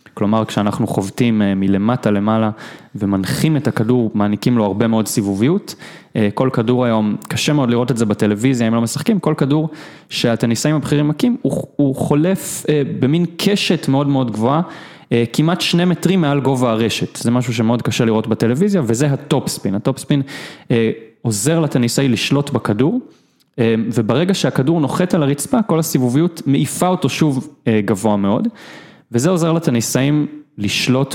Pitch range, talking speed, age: 105-145 Hz, 145 wpm, 20-39